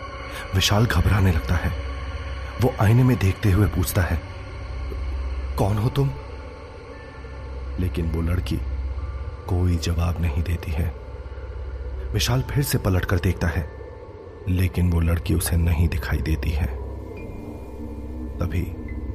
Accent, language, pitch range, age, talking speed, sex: native, Hindi, 80-95 Hz, 30-49, 120 wpm, male